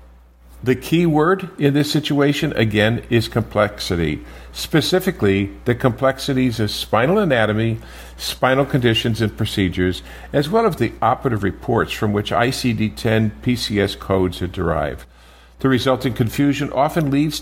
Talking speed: 125 wpm